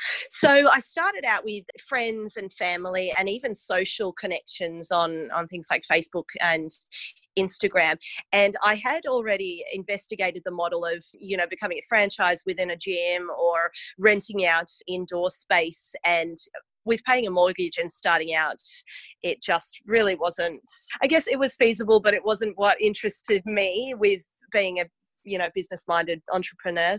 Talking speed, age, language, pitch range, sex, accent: 160 wpm, 30-49, English, 175-215 Hz, female, Australian